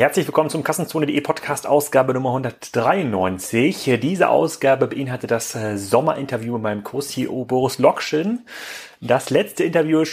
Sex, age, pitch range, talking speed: male, 30-49, 115-145 Hz, 125 wpm